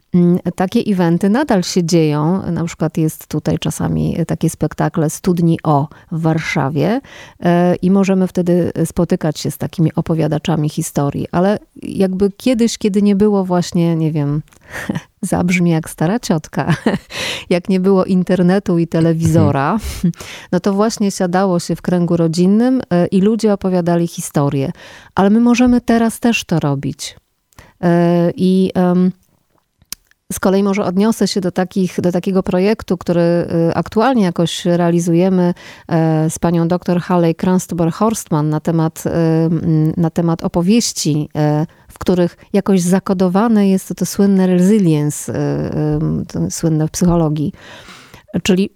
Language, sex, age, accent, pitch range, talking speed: Polish, female, 30-49, native, 165-195 Hz, 125 wpm